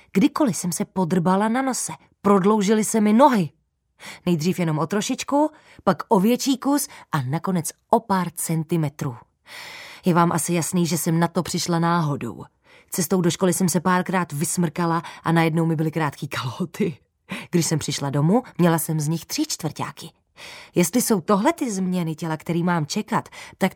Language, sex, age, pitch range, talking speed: Czech, female, 20-39, 160-200 Hz, 165 wpm